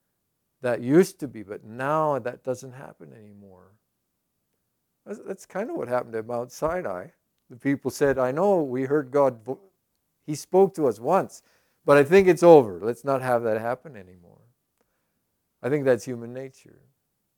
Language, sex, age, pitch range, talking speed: English, male, 50-69, 110-145 Hz, 160 wpm